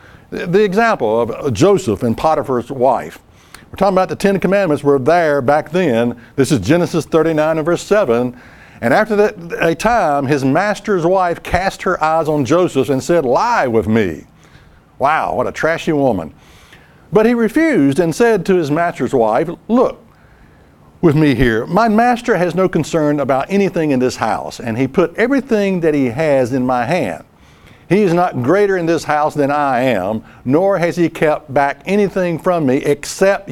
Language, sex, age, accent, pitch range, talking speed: English, male, 60-79, American, 140-195 Hz, 175 wpm